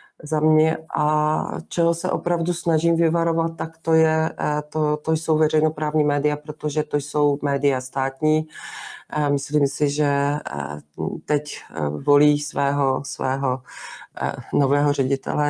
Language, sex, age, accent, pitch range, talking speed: Czech, female, 40-59, native, 135-150 Hz, 115 wpm